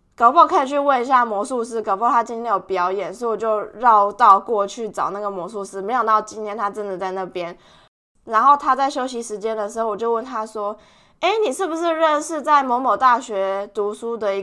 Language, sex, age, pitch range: Chinese, female, 20-39, 210-280 Hz